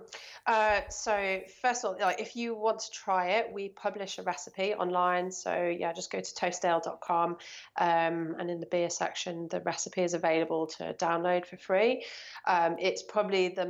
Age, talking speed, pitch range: 30-49, 180 wpm, 175-210 Hz